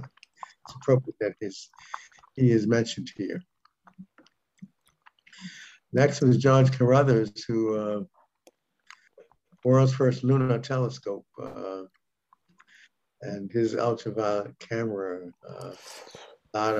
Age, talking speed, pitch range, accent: 60-79, 80 wpm, 105-130 Hz, American